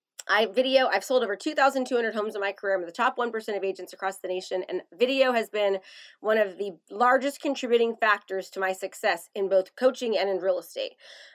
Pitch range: 200-260 Hz